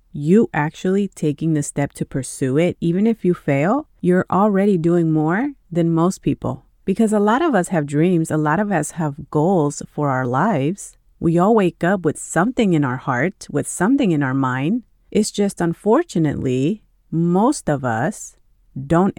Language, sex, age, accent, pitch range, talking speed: English, female, 30-49, American, 150-200 Hz, 175 wpm